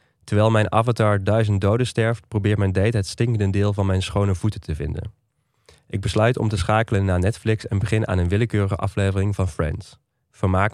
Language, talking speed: Dutch, 190 wpm